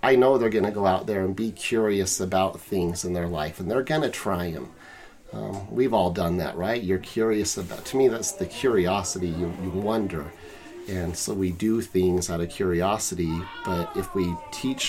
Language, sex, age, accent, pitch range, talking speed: English, male, 40-59, American, 95-110 Hz, 205 wpm